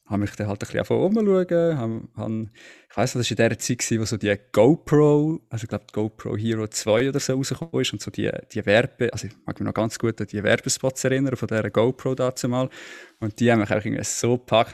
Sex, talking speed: male, 230 wpm